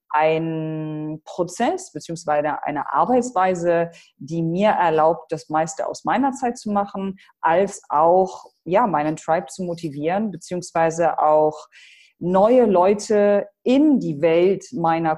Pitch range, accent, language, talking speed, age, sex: 155-195 Hz, German, German, 120 wpm, 30-49, female